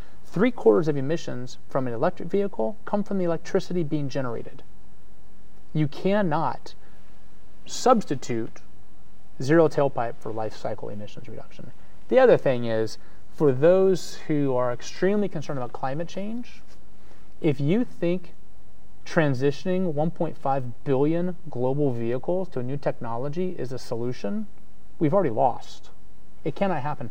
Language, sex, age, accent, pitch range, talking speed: English, male, 30-49, American, 120-160 Hz, 130 wpm